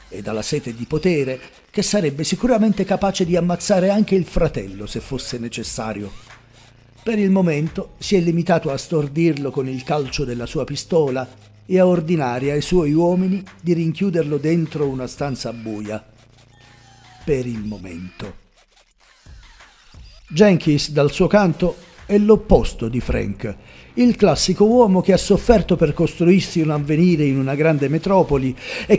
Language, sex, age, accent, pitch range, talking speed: Italian, male, 50-69, native, 125-175 Hz, 145 wpm